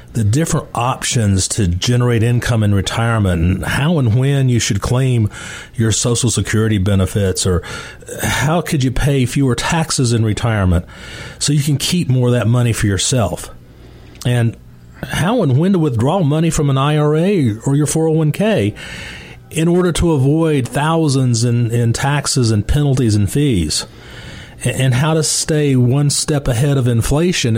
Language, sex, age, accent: English, male, 40-59, American